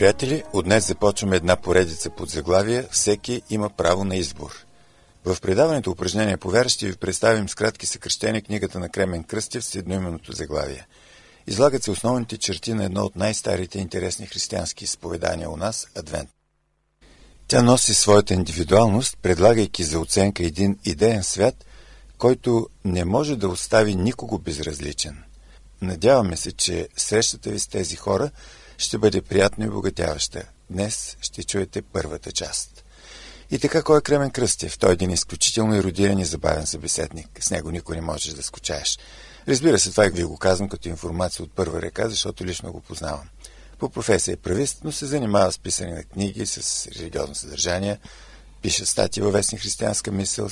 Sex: male